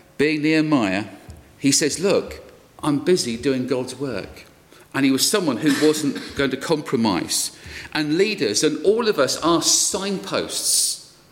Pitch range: 140-195 Hz